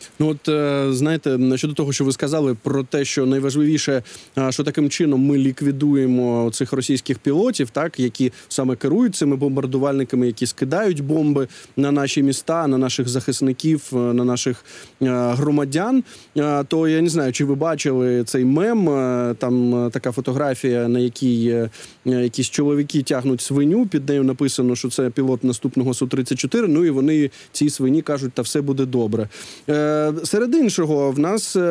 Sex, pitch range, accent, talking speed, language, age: male, 130-165 Hz, native, 150 wpm, Ukrainian, 20-39